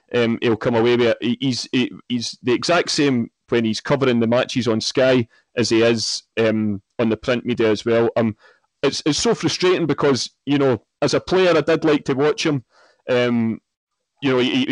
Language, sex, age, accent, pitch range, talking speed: English, male, 30-49, British, 120-145 Hz, 205 wpm